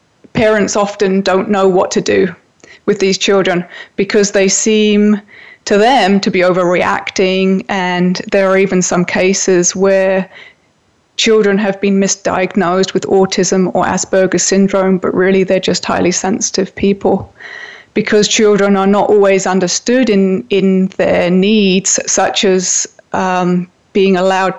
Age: 20-39